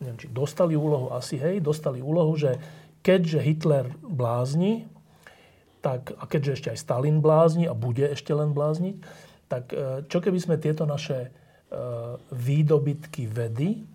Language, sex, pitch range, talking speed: Slovak, male, 130-160 Hz, 140 wpm